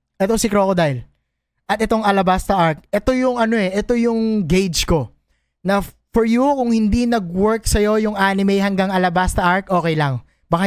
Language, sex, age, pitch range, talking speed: Filipino, male, 20-39, 150-220 Hz, 170 wpm